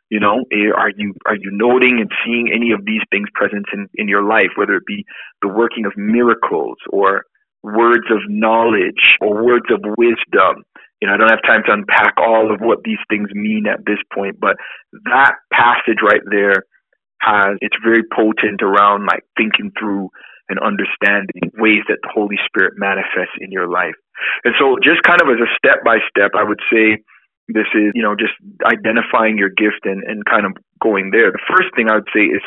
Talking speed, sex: 200 wpm, male